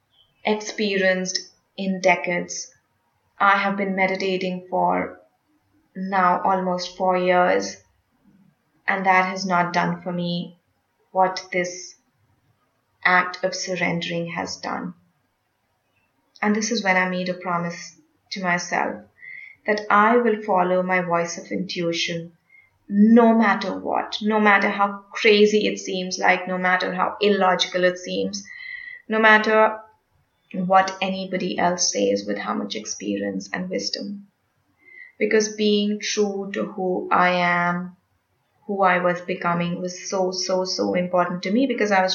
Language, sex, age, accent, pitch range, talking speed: English, female, 20-39, Indian, 175-200 Hz, 130 wpm